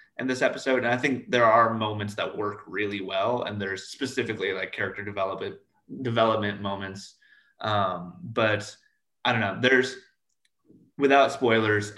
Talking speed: 145 wpm